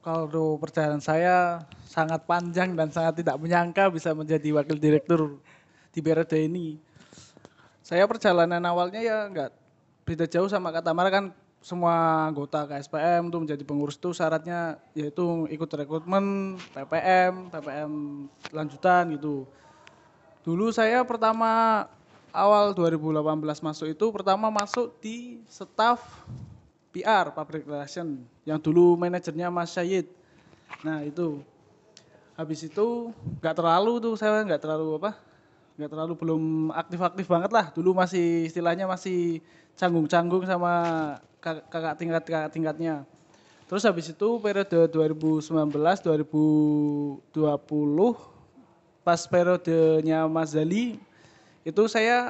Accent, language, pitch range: native, Indonesian, 155-185 Hz